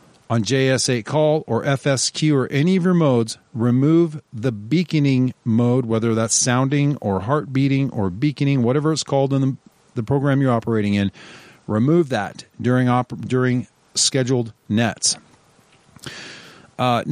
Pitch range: 115-145 Hz